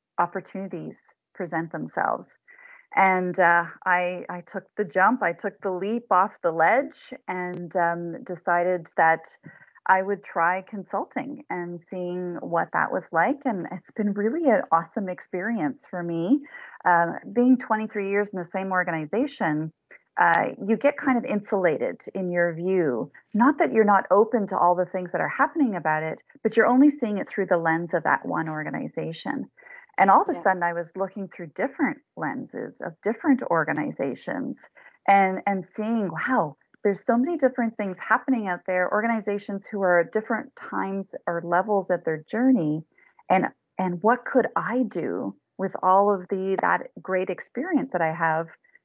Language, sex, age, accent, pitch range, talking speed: English, female, 30-49, American, 175-235 Hz, 165 wpm